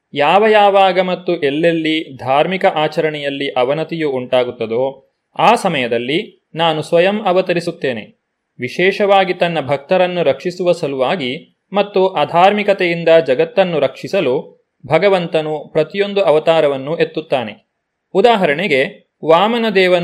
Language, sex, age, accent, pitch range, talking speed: Kannada, male, 30-49, native, 155-195 Hz, 85 wpm